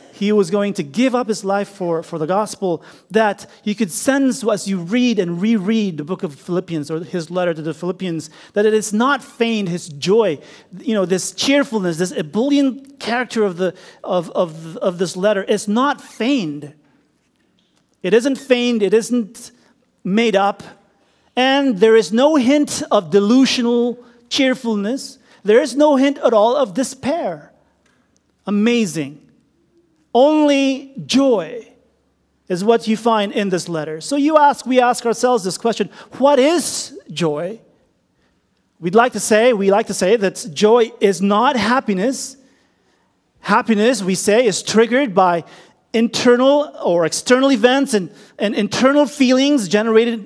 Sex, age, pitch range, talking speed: male, 40-59, 190-255 Hz, 150 wpm